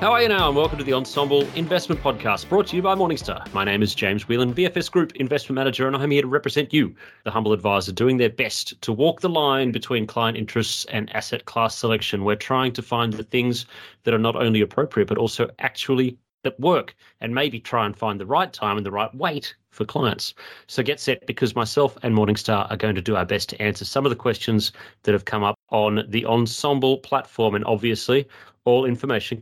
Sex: male